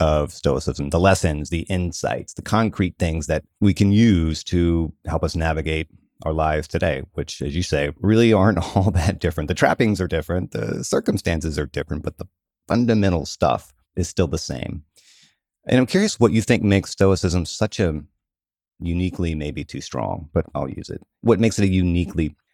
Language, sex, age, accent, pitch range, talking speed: English, male, 30-49, American, 80-100 Hz, 180 wpm